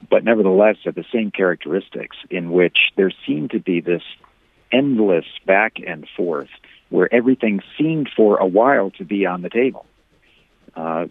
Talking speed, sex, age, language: 155 wpm, male, 50-69, English